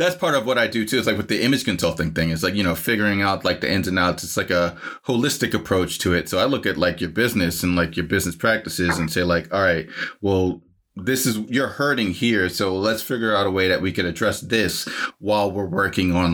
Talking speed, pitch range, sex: 255 wpm, 90-115 Hz, male